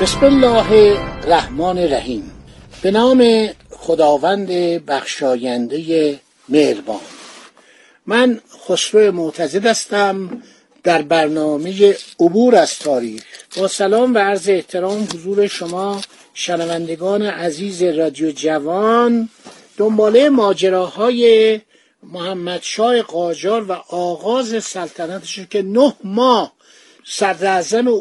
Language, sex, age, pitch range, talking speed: Persian, male, 60-79, 175-230 Hz, 90 wpm